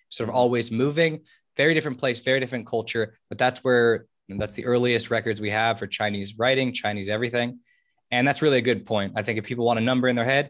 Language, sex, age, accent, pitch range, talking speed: English, male, 20-39, American, 110-130 Hz, 230 wpm